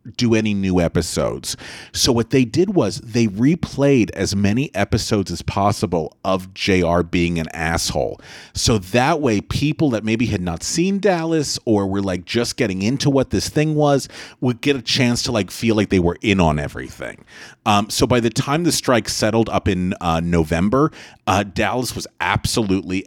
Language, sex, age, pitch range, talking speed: English, male, 40-59, 95-125 Hz, 180 wpm